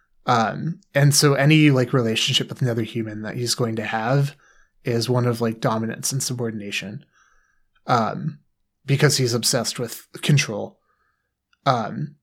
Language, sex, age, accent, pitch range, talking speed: English, male, 20-39, American, 110-140 Hz, 135 wpm